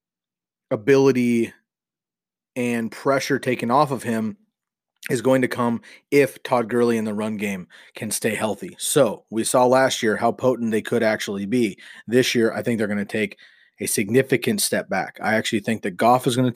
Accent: American